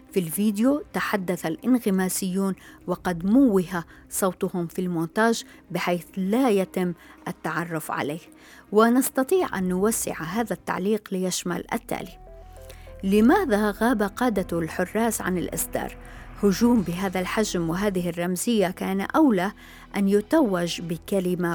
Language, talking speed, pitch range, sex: Arabic, 105 wpm, 175-220 Hz, female